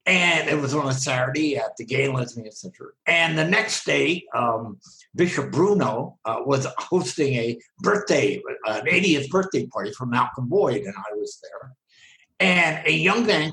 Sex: male